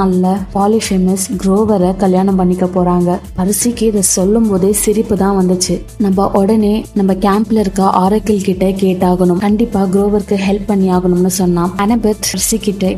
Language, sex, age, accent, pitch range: Tamil, female, 20-39, native, 185-210 Hz